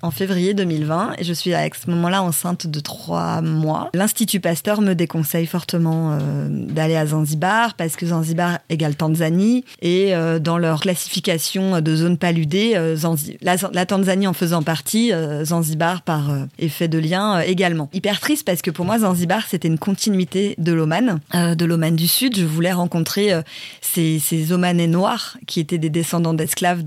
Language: French